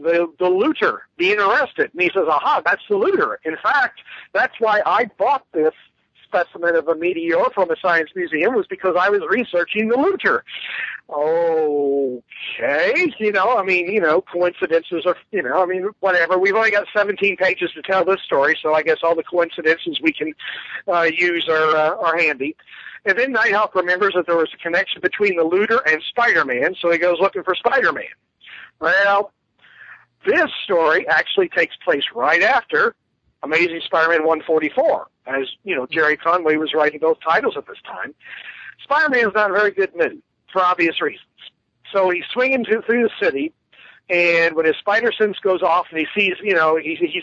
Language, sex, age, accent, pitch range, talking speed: English, male, 50-69, American, 165-225 Hz, 185 wpm